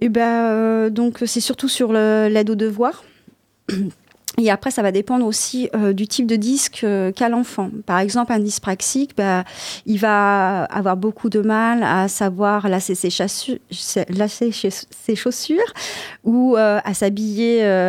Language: French